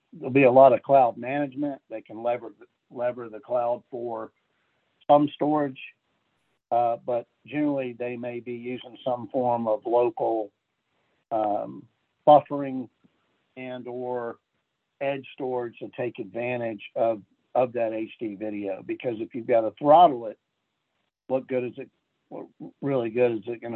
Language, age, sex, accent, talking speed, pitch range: English, 50-69, male, American, 145 wpm, 115-130 Hz